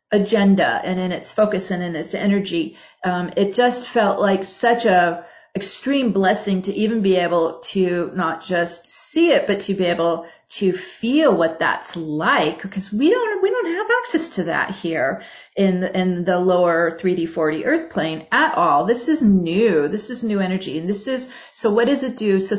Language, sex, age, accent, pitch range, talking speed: English, female, 40-59, American, 185-235 Hz, 195 wpm